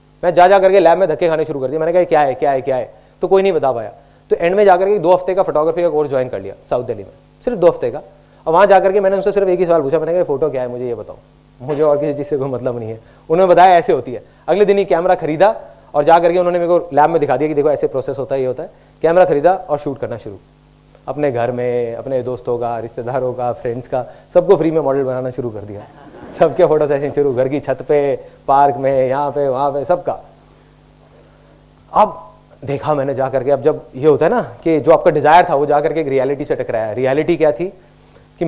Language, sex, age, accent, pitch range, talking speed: Hindi, male, 30-49, native, 135-180 Hz, 210 wpm